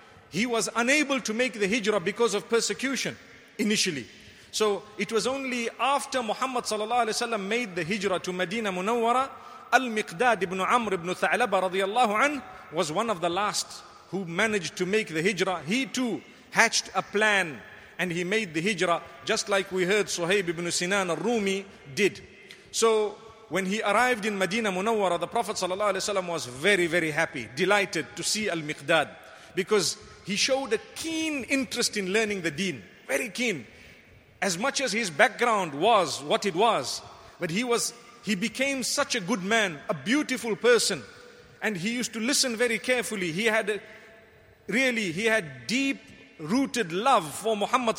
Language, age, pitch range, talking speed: English, 40-59, 190-235 Hz, 160 wpm